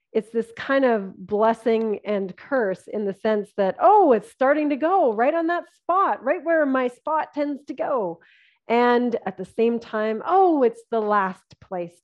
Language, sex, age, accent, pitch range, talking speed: English, female, 30-49, American, 200-255 Hz, 185 wpm